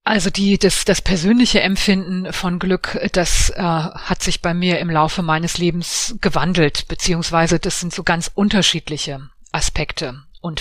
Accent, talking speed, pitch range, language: German, 155 wpm, 170-195 Hz, German